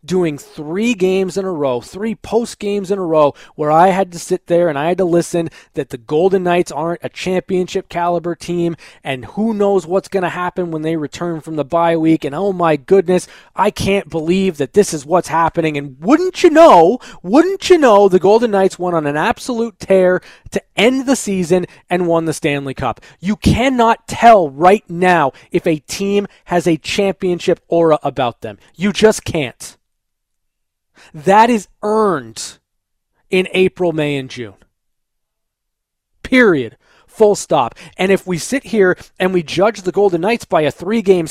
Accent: American